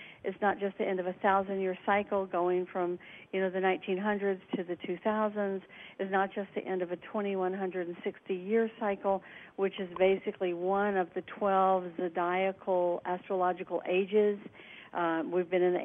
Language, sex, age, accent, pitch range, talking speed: English, female, 50-69, American, 175-195 Hz, 160 wpm